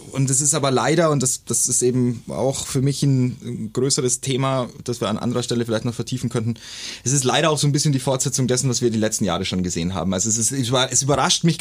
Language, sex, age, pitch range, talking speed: German, male, 30-49, 120-150 Hz, 250 wpm